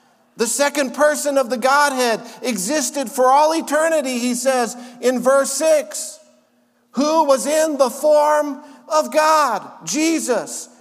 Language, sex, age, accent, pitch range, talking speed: English, male, 50-69, American, 245-300 Hz, 130 wpm